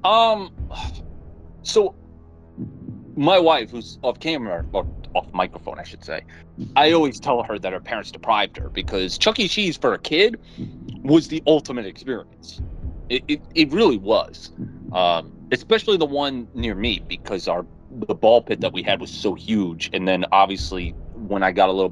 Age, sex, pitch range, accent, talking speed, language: 30-49, male, 85-140 Hz, American, 170 wpm, English